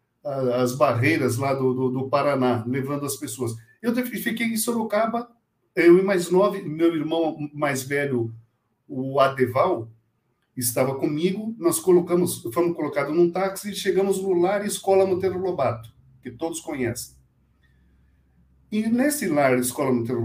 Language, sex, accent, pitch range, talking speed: Portuguese, male, Brazilian, 125-185 Hz, 140 wpm